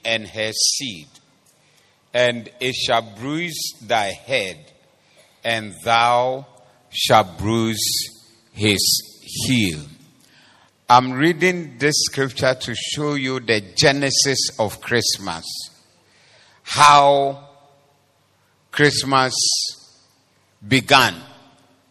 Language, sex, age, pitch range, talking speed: English, male, 50-69, 115-155 Hz, 80 wpm